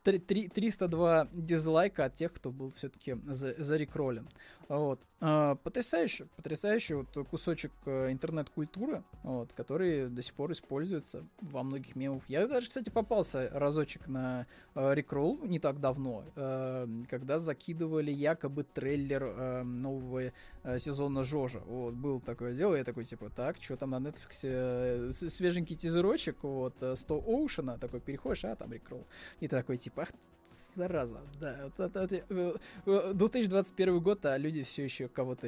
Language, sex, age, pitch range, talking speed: Russian, male, 20-39, 130-165 Hz, 125 wpm